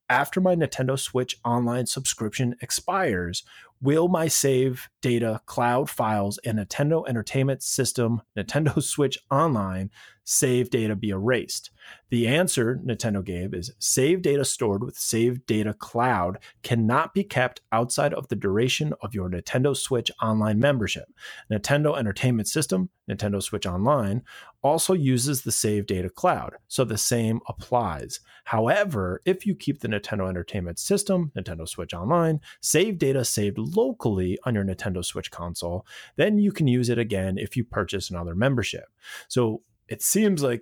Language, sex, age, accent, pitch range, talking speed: English, male, 30-49, American, 105-135 Hz, 150 wpm